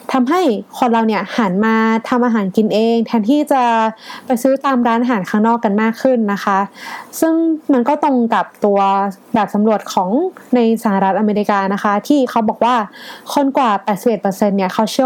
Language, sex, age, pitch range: Thai, female, 20-39, 205-255 Hz